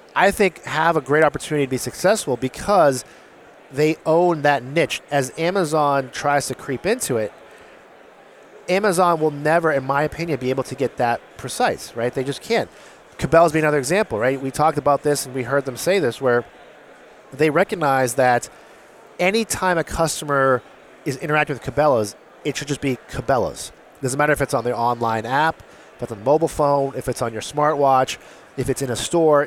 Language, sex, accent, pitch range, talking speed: English, male, American, 130-155 Hz, 185 wpm